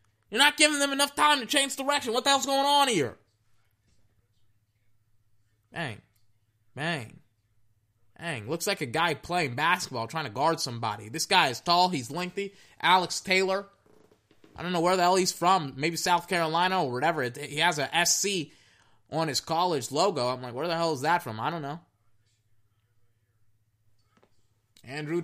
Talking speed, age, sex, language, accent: 165 wpm, 20-39, male, English, American